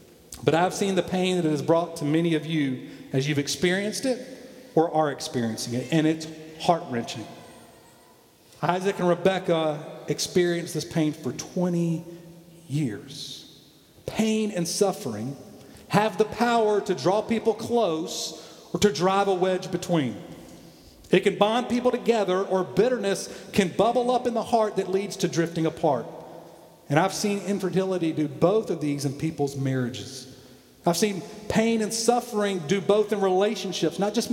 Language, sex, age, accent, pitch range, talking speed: English, male, 40-59, American, 160-210 Hz, 155 wpm